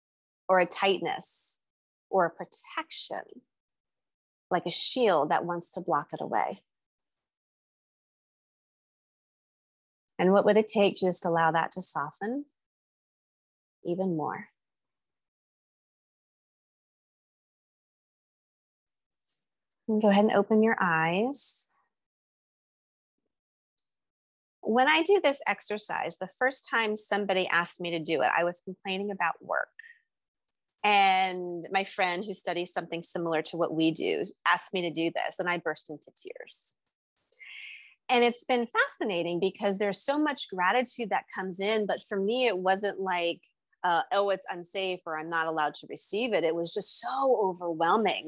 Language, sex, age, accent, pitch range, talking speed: English, female, 30-49, American, 170-220 Hz, 135 wpm